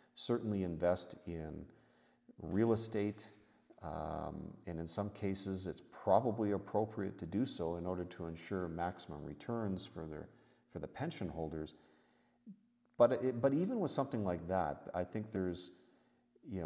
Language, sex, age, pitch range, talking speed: English, male, 40-59, 80-105 Hz, 145 wpm